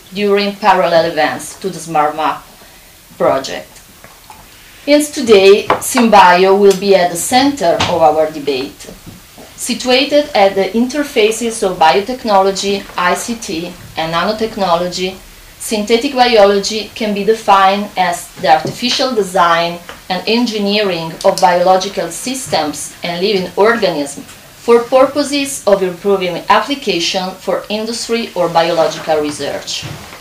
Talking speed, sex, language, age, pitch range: 105 wpm, female, Italian, 30-49, 170-220 Hz